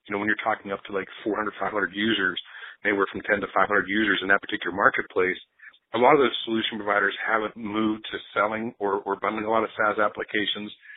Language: English